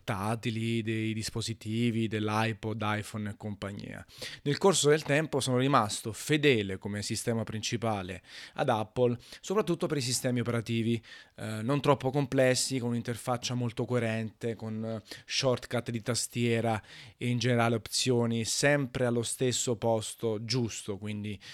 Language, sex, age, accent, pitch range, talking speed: Italian, male, 20-39, native, 105-125 Hz, 130 wpm